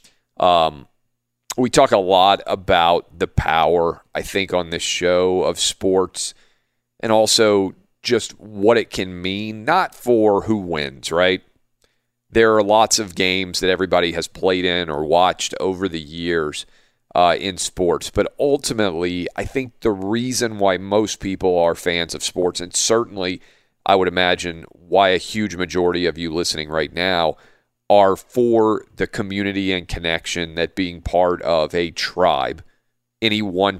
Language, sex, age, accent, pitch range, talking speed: English, male, 40-59, American, 85-100 Hz, 155 wpm